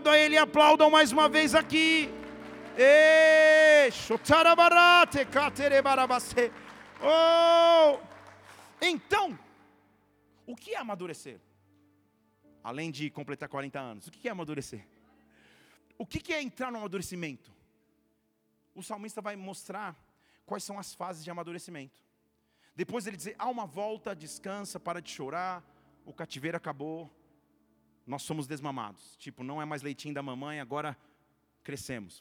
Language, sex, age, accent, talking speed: English, male, 40-59, Brazilian, 115 wpm